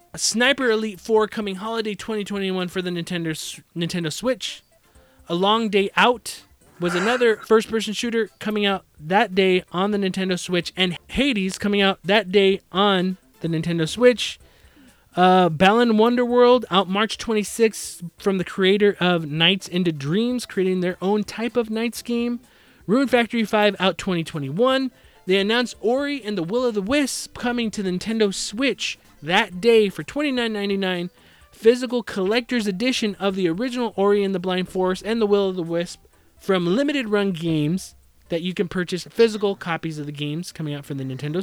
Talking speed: 165 wpm